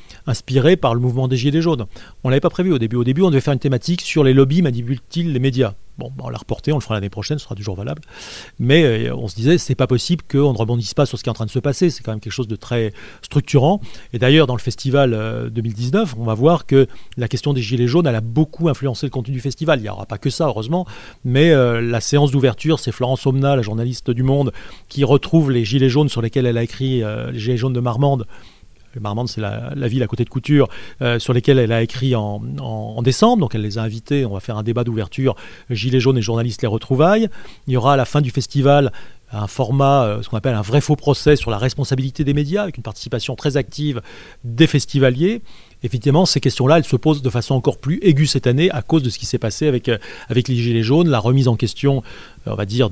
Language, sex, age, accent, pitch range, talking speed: French, male, 30-49, French, 115-145 Hz, 255 wpm